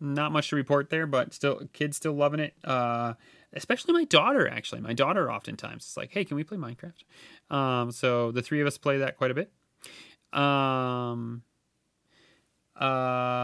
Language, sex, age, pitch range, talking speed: English, male, 30-49, 115-150 Hz, 175 wpm